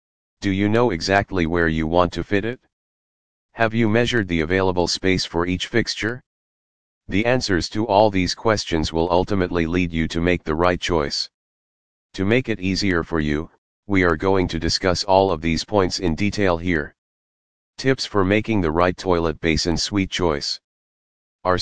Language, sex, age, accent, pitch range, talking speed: English, male, 40-59, American, 80-100 Hz, 170 wpm